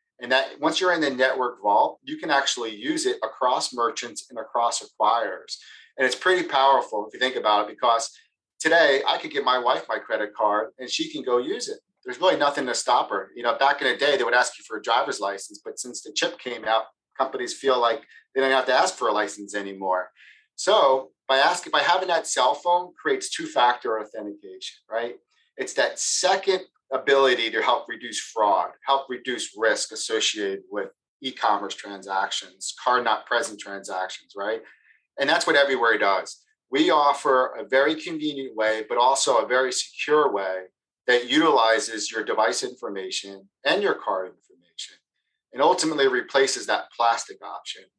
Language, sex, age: English, male, 40-59